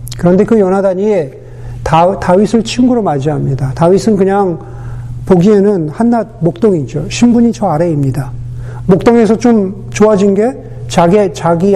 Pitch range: 135-215 Hz